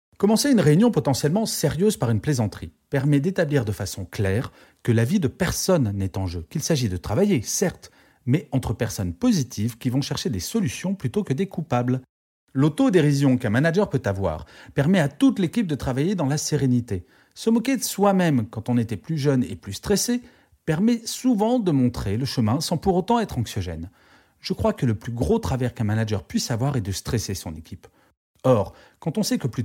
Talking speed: 200 wpm